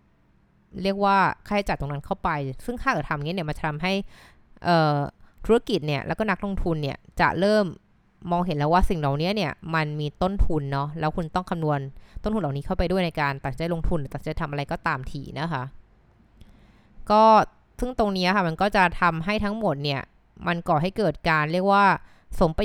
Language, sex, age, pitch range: Thai, female, 20-39, 145-185 Hz